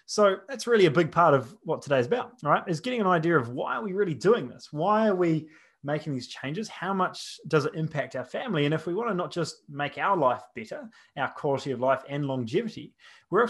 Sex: male